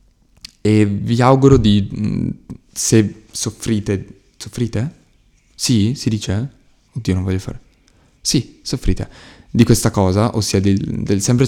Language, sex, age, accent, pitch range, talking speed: Italian, male, 20-39, native, 100-115 Hz, 115 wpm